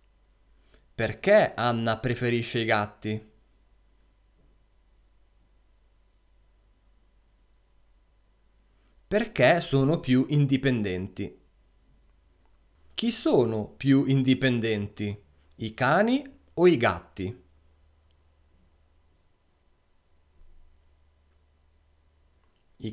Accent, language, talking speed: native, Italian, 50 wpm